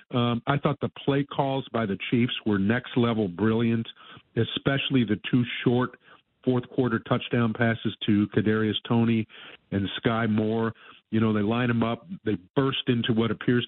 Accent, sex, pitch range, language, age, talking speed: American, male, 110-125 Hz, English, 50-69, 160 wpm